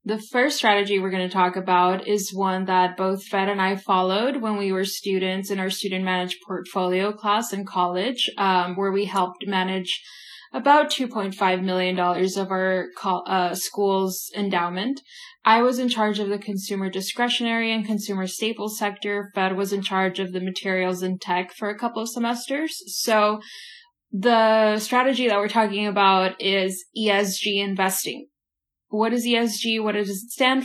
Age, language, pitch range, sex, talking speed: 10-29, English, 190-230 Hz, female, 165 wpm